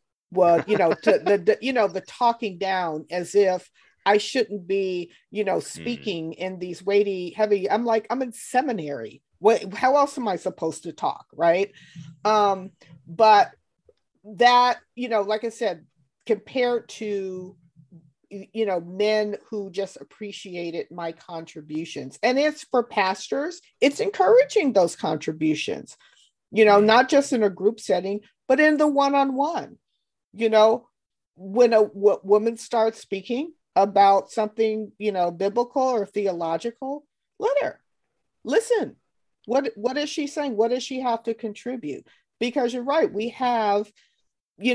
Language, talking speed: English, 145 wpm